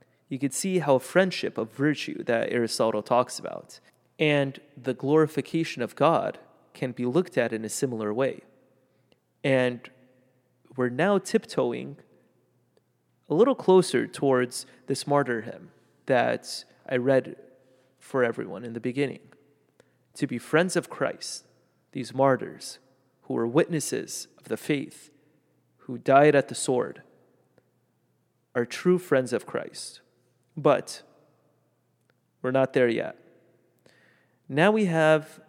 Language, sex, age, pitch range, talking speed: English, male, 30-49, 130-165 Hz, 125 wpm